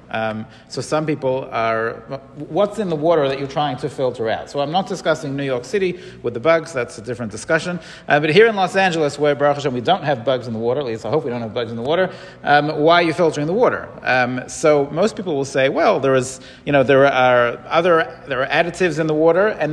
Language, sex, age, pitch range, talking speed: English, male, 40-59, 135-180 Hz, 255 wpm